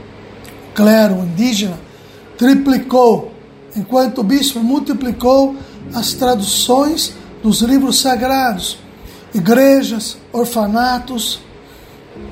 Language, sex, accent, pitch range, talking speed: Portuguese, male, Brazilian, 210-265 Hz, 70 wpm